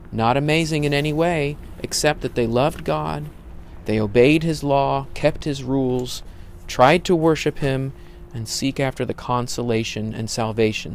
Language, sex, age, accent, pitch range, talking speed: English, male, 40-59, American, 110-145 Hz, 155 wpm